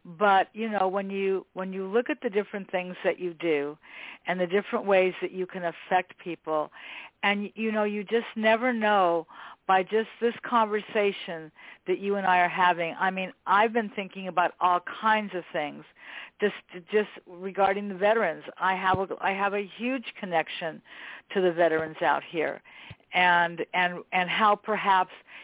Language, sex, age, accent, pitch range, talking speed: English, female, 50-69, American, 180-215 Hz, 175 wpm